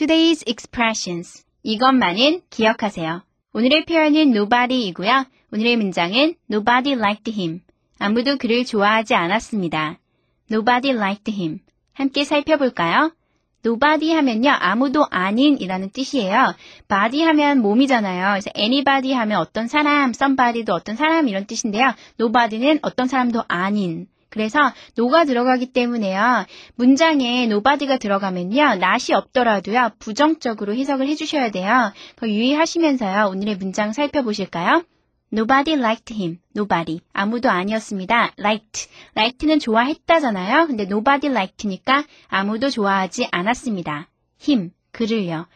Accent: native